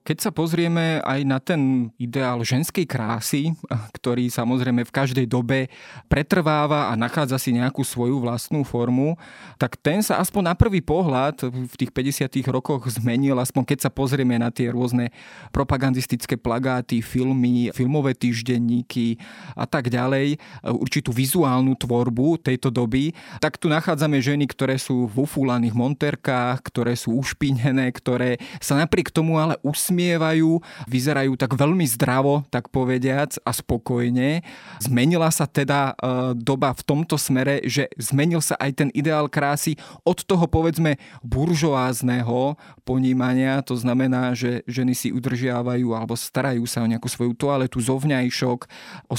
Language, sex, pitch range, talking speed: Slovak, male, 125-150 Hz, 140 wpm